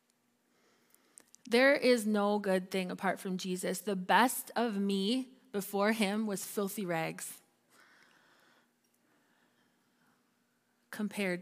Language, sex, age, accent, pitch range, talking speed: English, female, 20-39, American, 185-225 Hz, 95 wpm